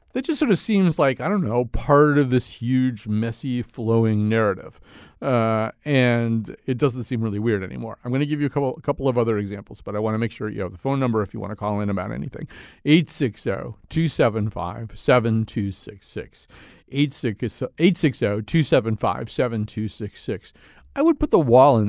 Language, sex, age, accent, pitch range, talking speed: English, male, 40-59, American, 110-145 Hz, 170 wpm